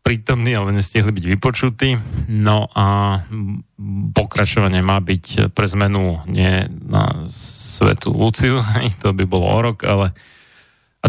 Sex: male